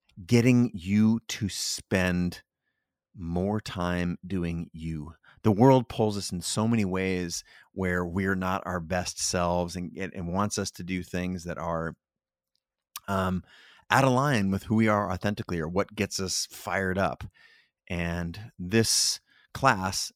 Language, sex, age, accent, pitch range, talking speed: English, male, 30-49, American, 85-100 Hz, 145 wpm